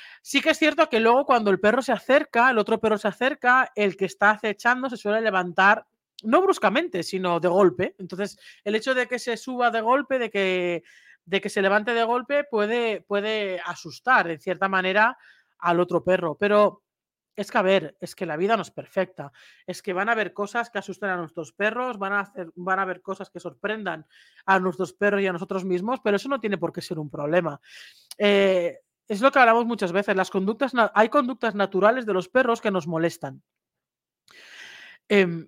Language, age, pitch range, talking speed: Spanish, 40-59, 180-235 Hz, 200 wpm